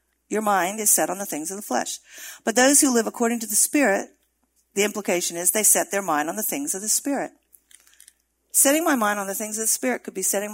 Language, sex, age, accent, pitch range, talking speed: English, female, 50-69, American, 175-230 Hz, 245 wpm